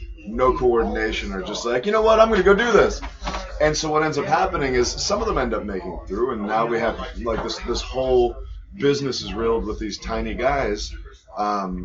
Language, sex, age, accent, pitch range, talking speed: English, male, 20-39, American, 115-150 Hz, 230 wpm